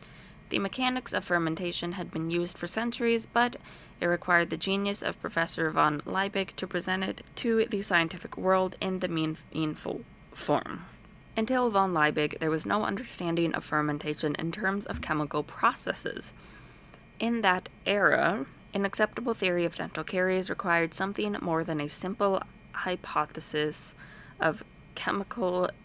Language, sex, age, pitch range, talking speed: English, female, 20-39, 155-195 Hz, 140 wpm